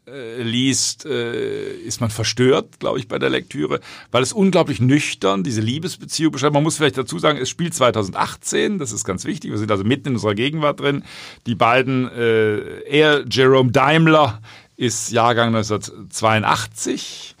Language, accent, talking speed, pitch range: German, German, 150 wpm, 115-150 Hz